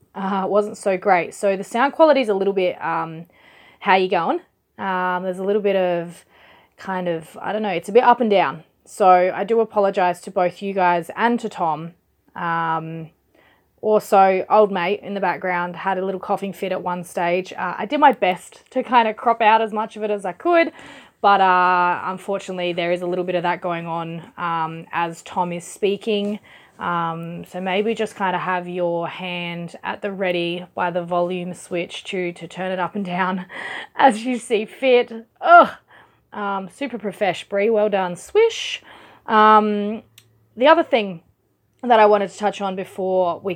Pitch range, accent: 180-210 Hz, Australian